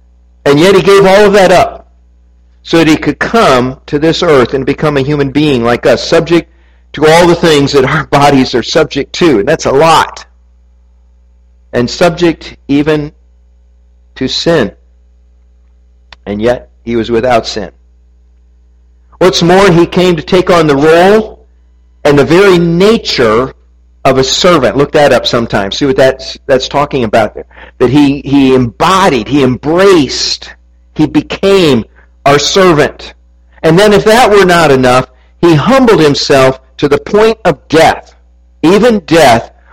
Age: 50-69